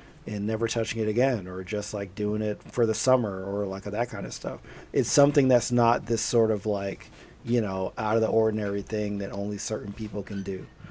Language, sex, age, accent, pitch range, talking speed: English, male, 40-59, American, 100-115 Hz, 220 wpm